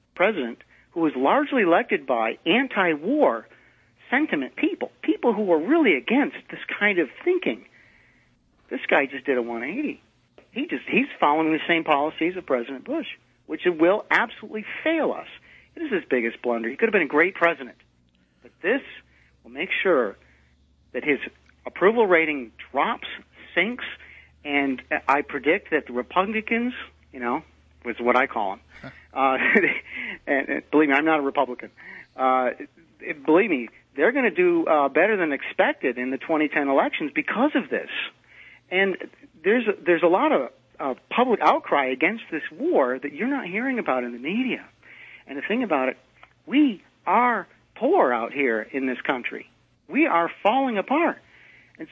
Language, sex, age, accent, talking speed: English, male, 50-69, American, 160 wpm